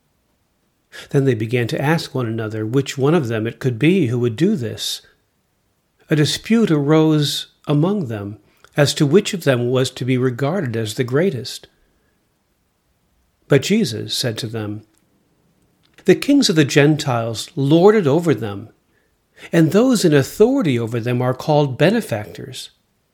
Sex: male